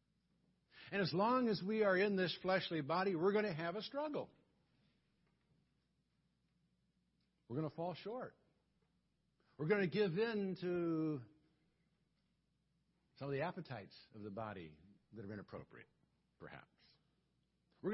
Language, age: English, 60-79